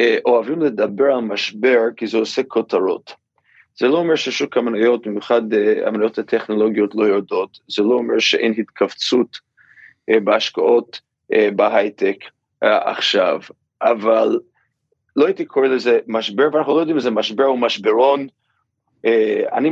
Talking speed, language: 125 wpm, Hebrew